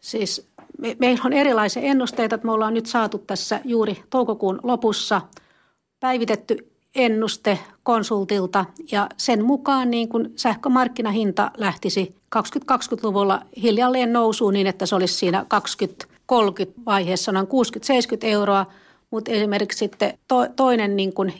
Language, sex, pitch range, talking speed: Finnish, female, 195-240 Hz, 120 wpm